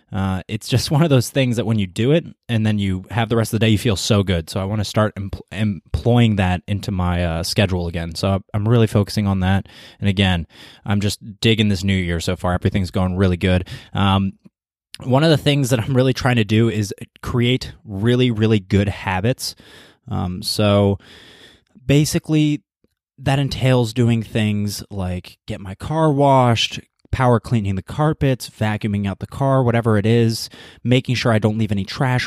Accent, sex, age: American, male, 20-39